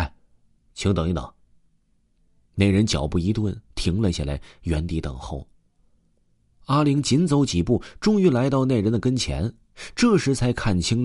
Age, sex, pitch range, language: 30-49, male, 80-115 Hz, Chinese